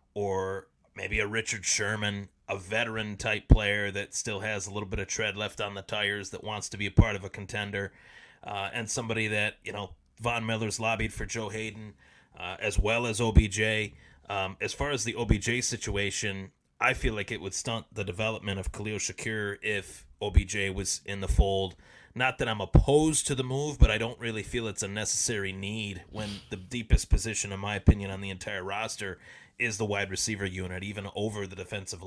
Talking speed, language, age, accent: 200 wpm, English, 30-49, American